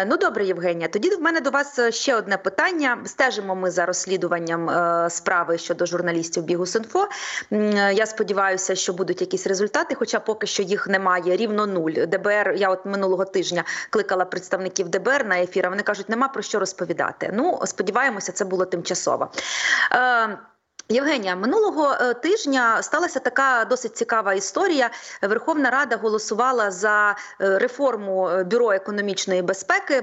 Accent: native